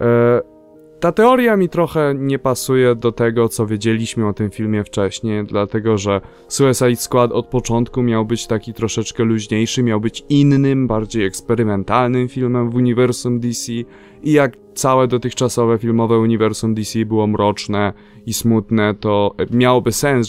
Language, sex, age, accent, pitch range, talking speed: Polish, male, 20-39, native, 110-125 Hz, 140 wpm